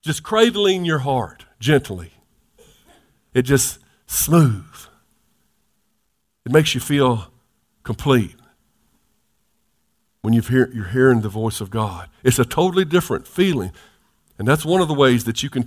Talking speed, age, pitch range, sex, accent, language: 140 wpm, 50-69, 115-155 Hz, male, American, English